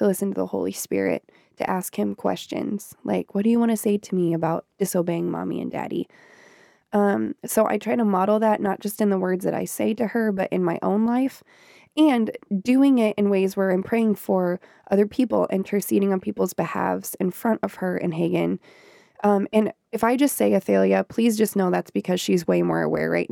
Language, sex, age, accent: English, female, 20-39, American